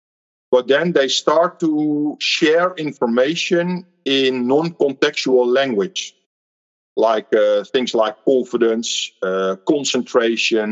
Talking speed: 95 wpm